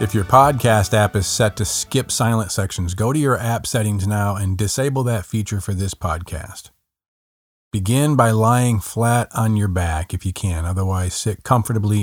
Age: 40-59